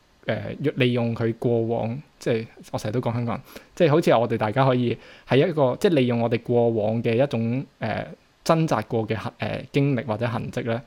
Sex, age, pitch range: male, 20-39, 110-130 Hz